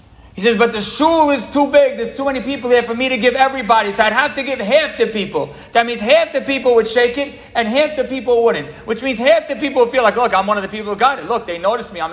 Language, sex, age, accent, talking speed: English, male, 40-59, American, 300 wpm